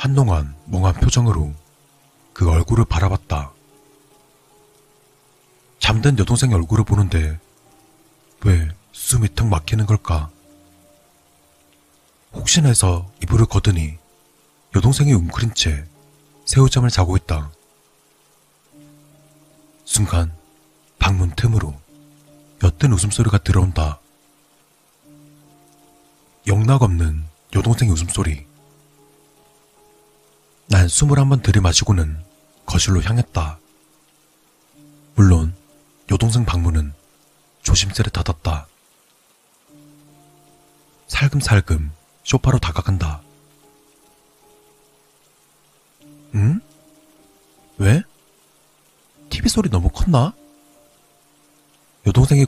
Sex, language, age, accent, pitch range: male, Korean, 40-59, native, 85-140 Hz